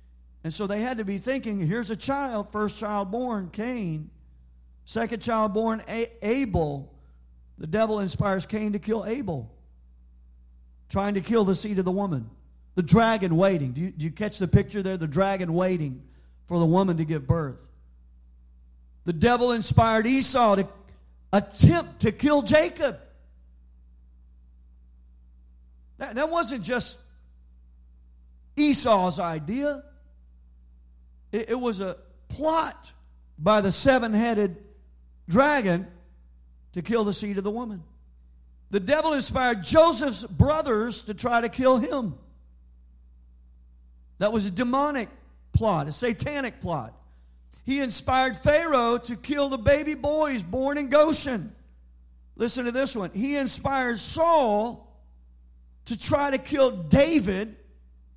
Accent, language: American, English